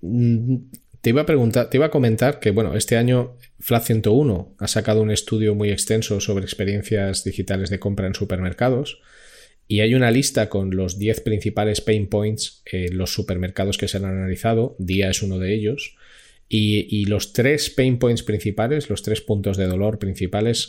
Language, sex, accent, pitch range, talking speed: Spanish, male, Spanish, 95-115 Hz, 170 wpm